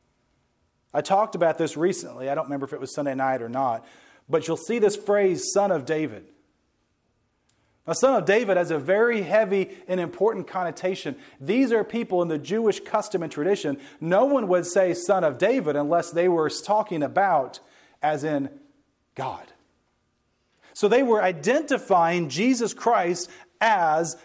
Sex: male